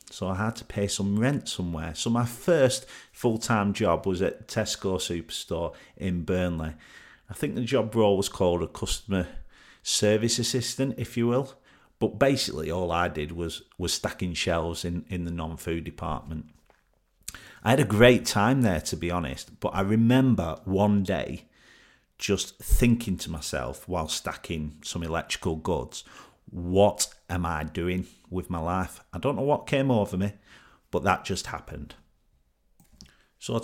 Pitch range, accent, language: 90-110 Hz, British, English